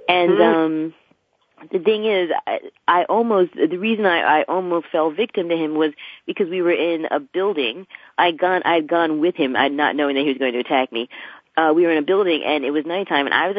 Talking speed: 230 wpm